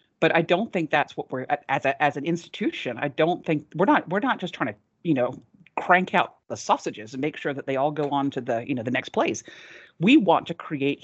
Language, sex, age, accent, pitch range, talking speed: English, female, 40-59, American, 140-175 Hz, 255 wpm